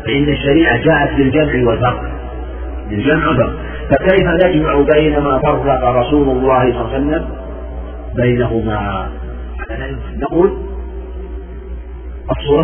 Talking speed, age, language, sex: 90 wpm, 40-59, Arabic, male